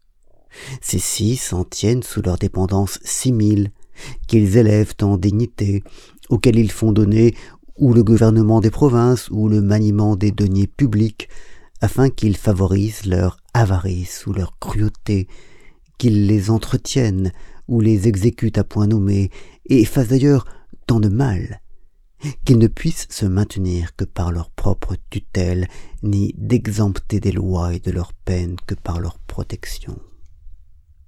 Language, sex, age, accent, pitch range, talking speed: French, male, 50-69, French, 90-110 Hz, 140 wpm